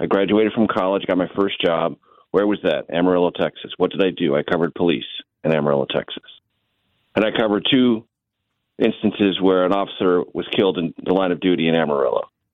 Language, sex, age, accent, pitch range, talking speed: English, male, 40-59, American, 95-120 Hz, 190 wpm